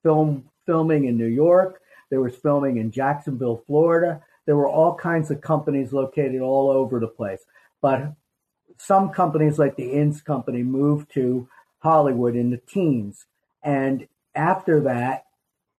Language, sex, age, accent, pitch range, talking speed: English, male, 50-69, American, 130-155 Hz, 145 wpm